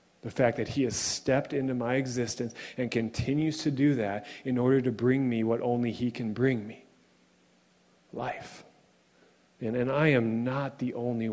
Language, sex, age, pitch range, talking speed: English, male, 40-59, 110-125 Hz, 175 wpm